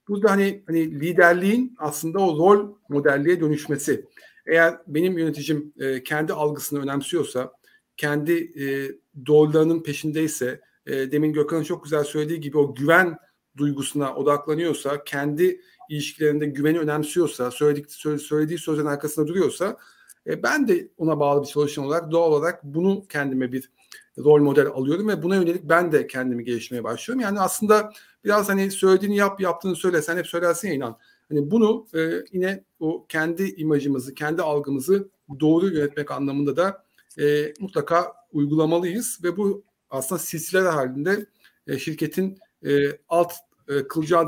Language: Turkish